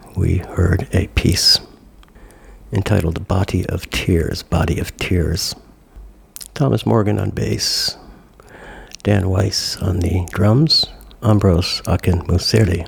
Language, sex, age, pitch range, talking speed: English, male, 60-79, 90-110 Hz, 105 wpm